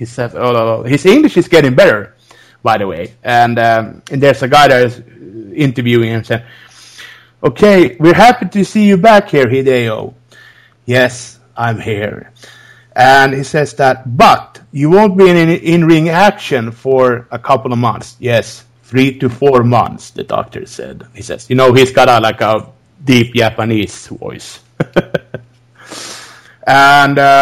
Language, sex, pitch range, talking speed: English, male, 120-155 Hz, 160 wpm